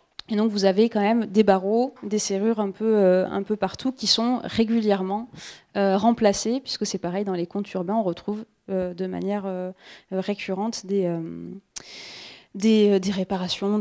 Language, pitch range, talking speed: French, 190-225 Hz, 165 wpm